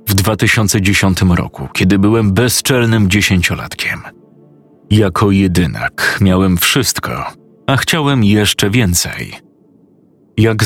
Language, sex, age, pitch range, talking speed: Polish, male, 30-49, 95-115 Hz, 90 wpm